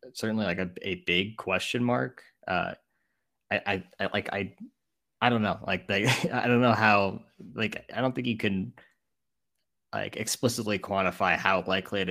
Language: English